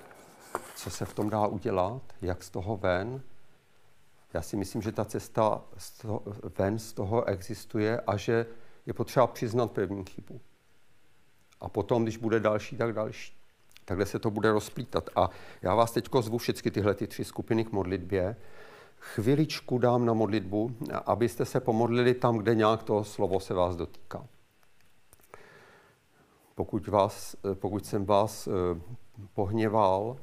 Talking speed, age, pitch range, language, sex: 145 wpm, 50-69, 100-115 Hz, Czech, male